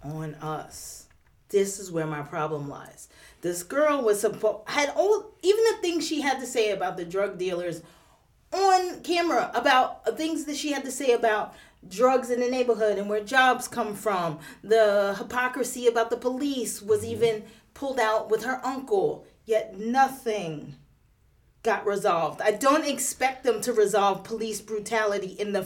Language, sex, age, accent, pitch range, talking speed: English, female, 30-49, American, 215-275 Hz, 165 wpm